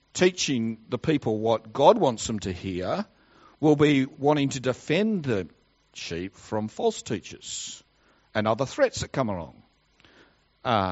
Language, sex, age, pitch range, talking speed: English, male, 50-69, 85-140 Hz, 145 wpm